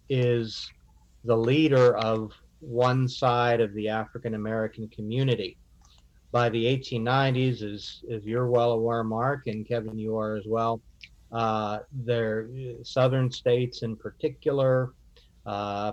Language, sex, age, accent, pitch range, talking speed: English, male, 50-69, American, 110-125 Hz, 125 wpm